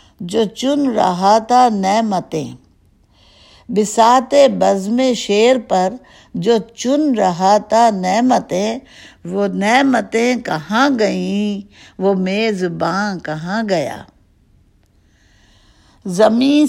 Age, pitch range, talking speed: 60-79, 180-235 Hz, 85 wpm